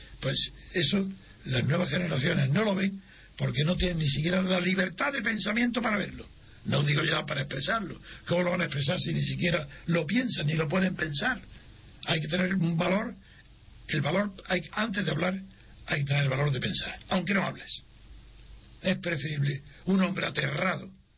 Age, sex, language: 60-79, male, Spanish